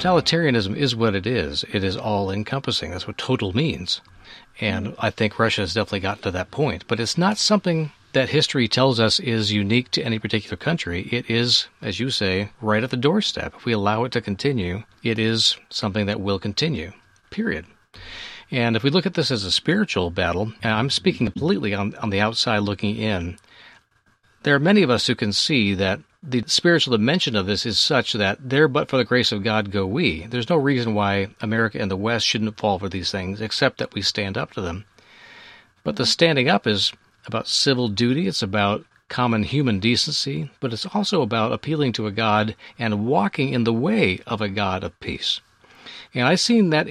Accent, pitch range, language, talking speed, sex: American, 105-135 Hz, English, 205 wpm, male